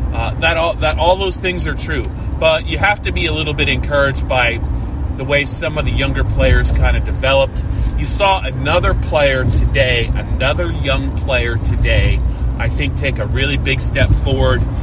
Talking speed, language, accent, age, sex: 185 wpm, English, American, 30-49, male